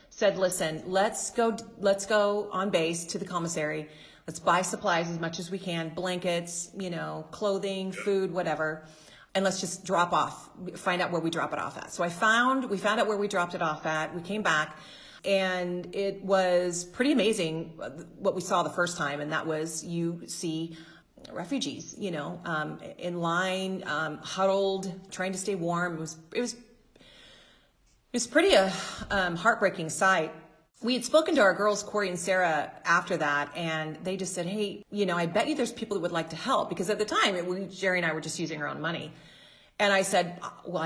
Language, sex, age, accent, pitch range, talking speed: English, female, 30-49, American, 165-200 Hz, 200 wpm